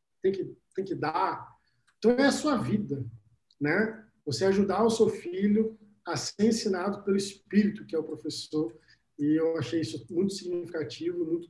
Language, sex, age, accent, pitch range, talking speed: Portuguese, male, 50-69, Brazilian, 195-235 Hz, 165 wpm